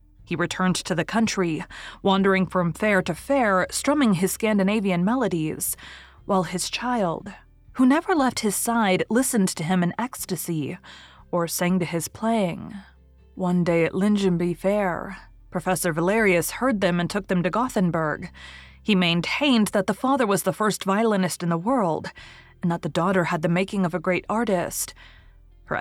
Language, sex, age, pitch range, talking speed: English, female, 30-49, 170-215 Hz, 165 wpm